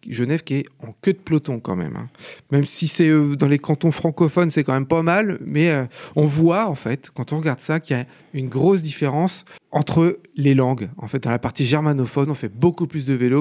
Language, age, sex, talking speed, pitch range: French, 40-59, male, 230 wpm, 135-175 Hz